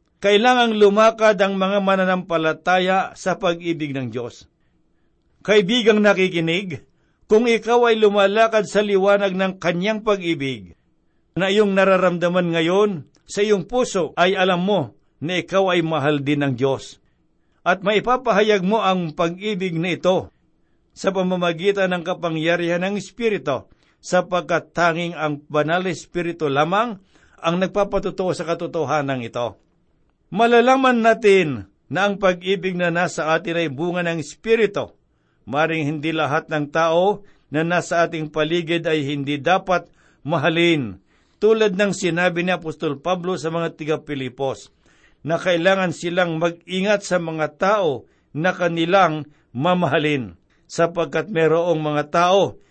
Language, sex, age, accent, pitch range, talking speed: Filipino, male, 60-79, native, 155-195 Hz, 125 wpm